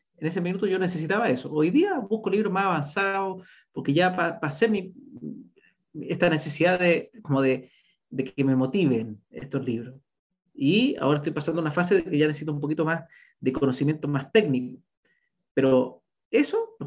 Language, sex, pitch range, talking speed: Spanish, male, 145-205 Hz, 170 wpm